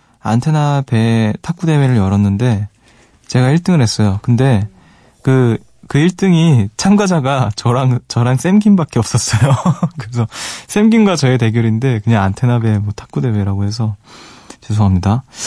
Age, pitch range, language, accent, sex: 20-39, 110-140 Hz, Korean, native, male